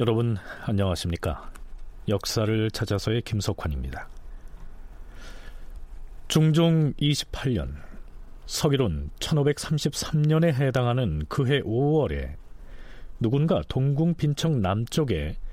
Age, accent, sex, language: 40-59, native, male, Korean